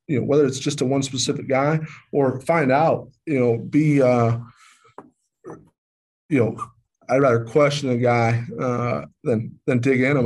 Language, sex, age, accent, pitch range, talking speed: English, male, 20-39, American, 120-135 Hz, 170 wpm